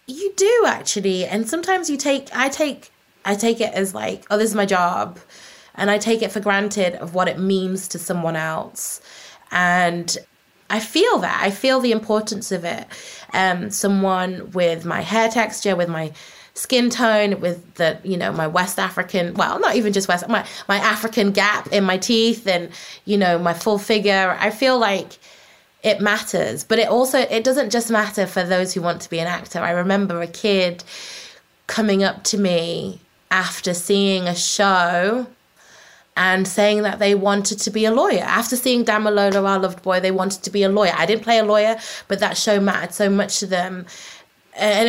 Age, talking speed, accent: 20-39, 195 wpm, British